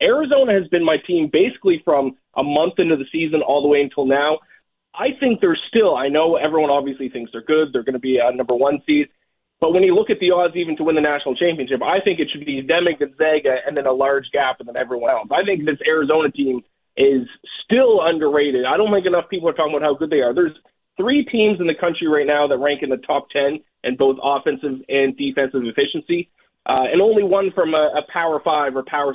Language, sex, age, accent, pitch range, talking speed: English, male, 20-39, American, 130-175 Hz, 240 wpm